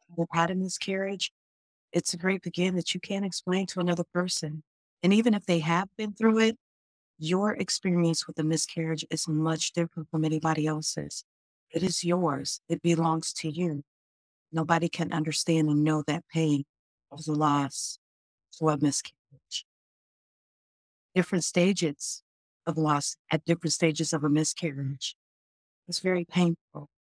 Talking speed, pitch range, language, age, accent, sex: 150 wpm, 150-175 Hz, English, 50-69, American, female